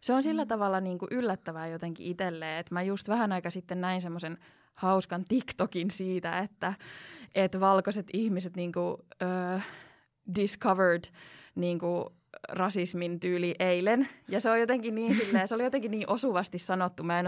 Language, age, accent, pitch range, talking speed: Finnish, 20-39, native, 175-210 Hz, 155 wpm